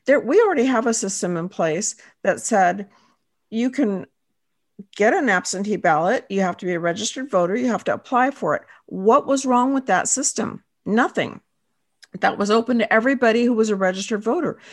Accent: American